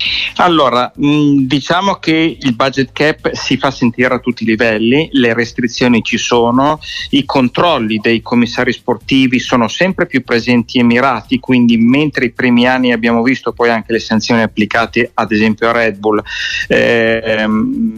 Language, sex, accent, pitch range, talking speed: Italian, male, native, 115-140 Hz, 155 wpm